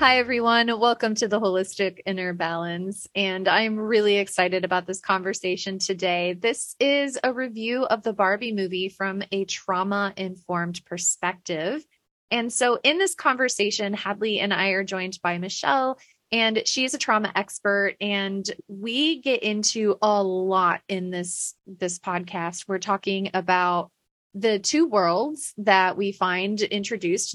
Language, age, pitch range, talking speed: English, 30-49, 190-235 Hz, 145 wpm